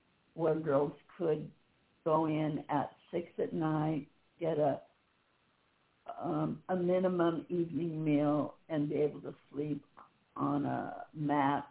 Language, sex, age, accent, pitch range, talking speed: English, female, 60-79, American, 150-180 Hz, 125 wpm